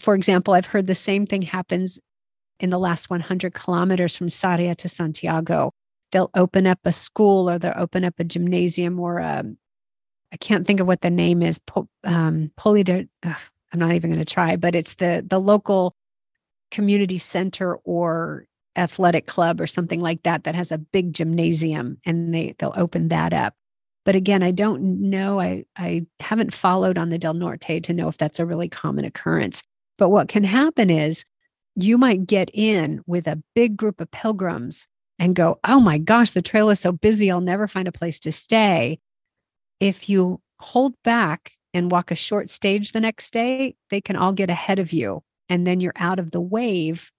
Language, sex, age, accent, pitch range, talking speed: English, female, 40-59, American, 170-195 Hz, 195 wpm